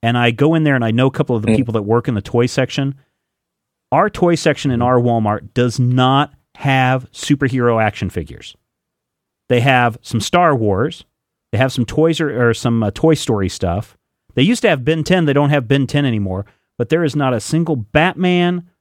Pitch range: 110-140 Hz